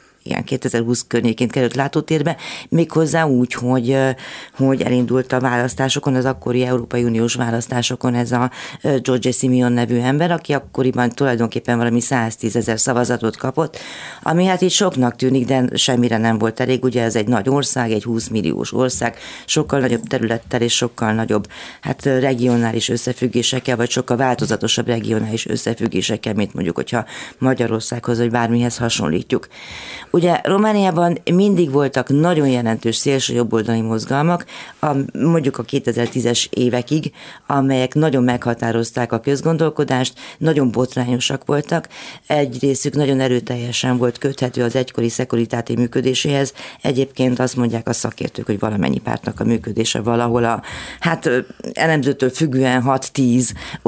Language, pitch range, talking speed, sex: Hungarian, 120-135 Hz, 130 wpm, female